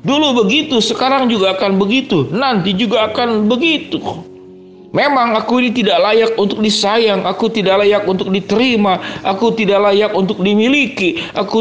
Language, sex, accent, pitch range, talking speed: Indonesian, male, native, 185-230 Hz, 145 wpm